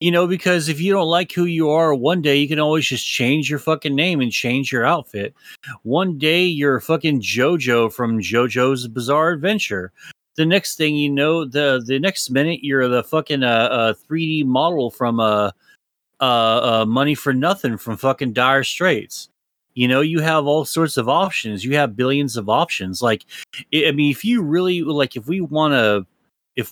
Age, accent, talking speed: 30-49, American, 190 wpm